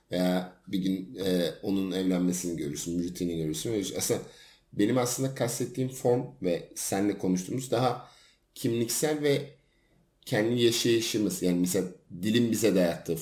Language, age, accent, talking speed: Turkish, 50-69, native, 125 wpm